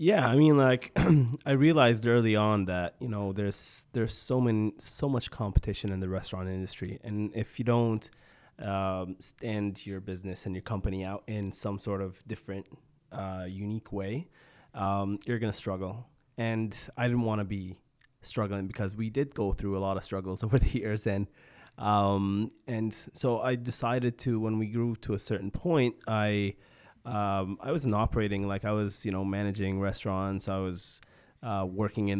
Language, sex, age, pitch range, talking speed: English, male, 20-39, 100-120 Hz, 180 wpm